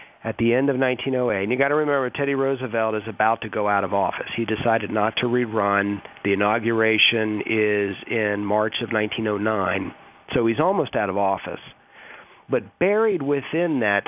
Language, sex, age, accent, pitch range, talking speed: English, male, 40-59, American, 110-135 Hz, 175 wpm